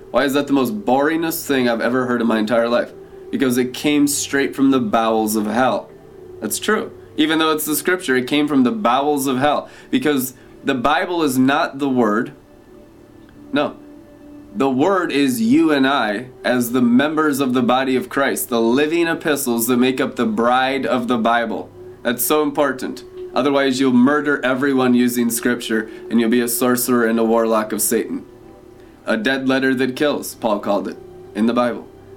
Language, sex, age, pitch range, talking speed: English, male, 20-39, 120-150 Hz, 185 wpm